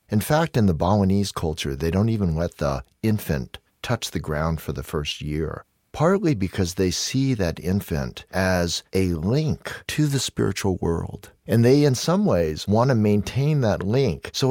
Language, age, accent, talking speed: English, 50-69, American, 180 wpm